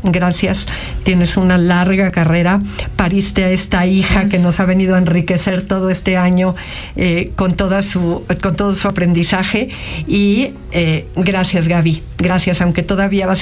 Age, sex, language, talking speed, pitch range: 50-69, female, Spanish, 150 wpm, 170-190 Hz